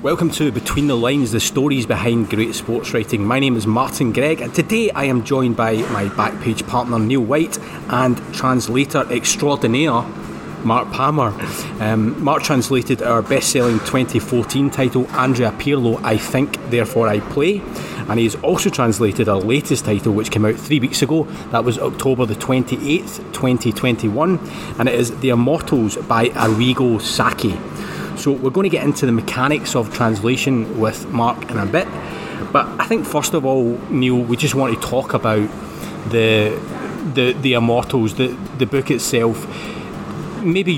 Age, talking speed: 30-49, 160 wpm